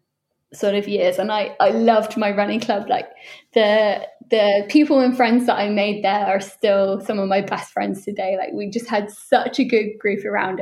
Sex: female